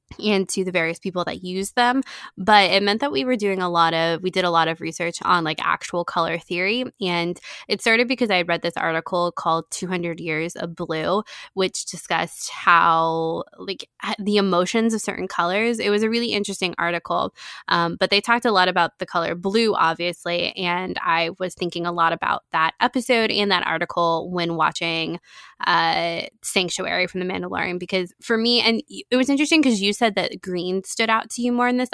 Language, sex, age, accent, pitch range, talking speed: English, female, 20-39, American, 175-210 Hz, 205 wpm